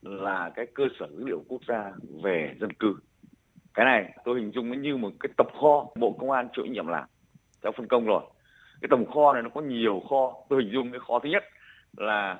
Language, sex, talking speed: Vietnamese, male, 230 wpm